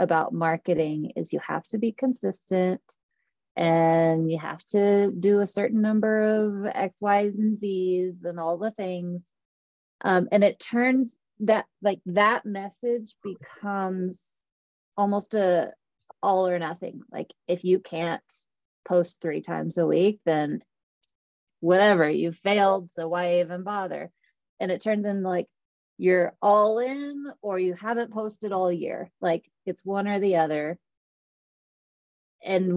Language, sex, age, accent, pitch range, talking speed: English, female, 20-39, American, 175-215 Hz, 140 wpm